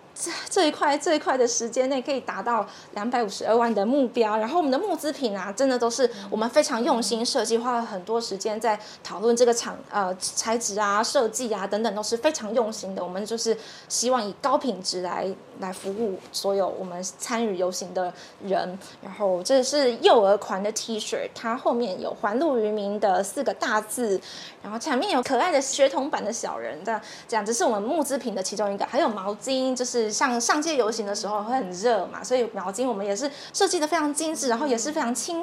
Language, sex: Chinese, female